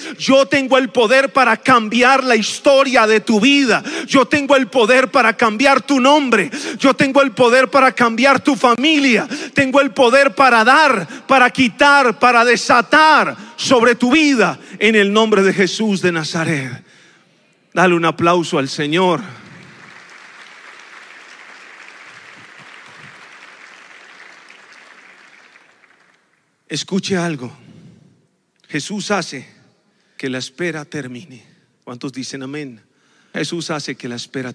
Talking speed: 115 wpm